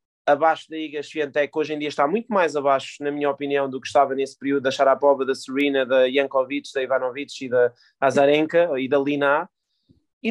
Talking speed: 200 wpm